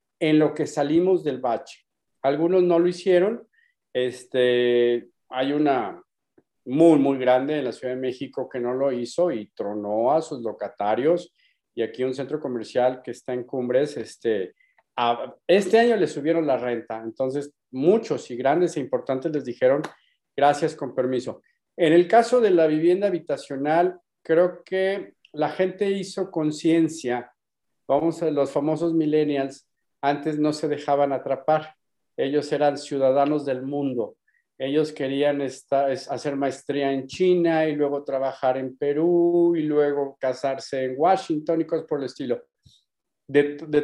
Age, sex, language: 50-69, male, Spanish